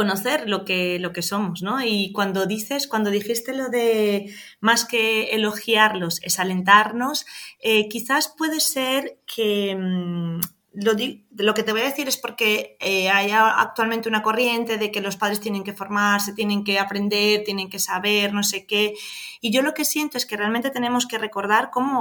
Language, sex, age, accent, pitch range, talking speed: Spanish, female, 20-39, Spanish, 200-240 Hz, 175 wpm